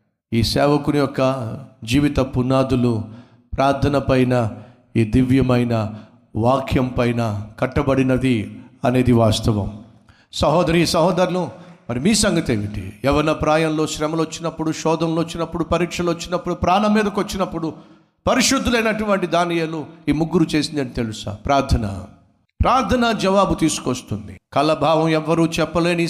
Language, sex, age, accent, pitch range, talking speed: Telugu, male, 50-69, native, 115-165 Hz, 100 wpm